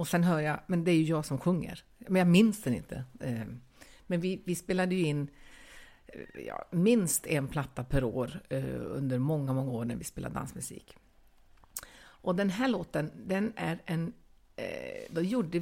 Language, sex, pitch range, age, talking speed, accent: Swedish, female, 145-195 Hz, 50-69, 175 wpm, native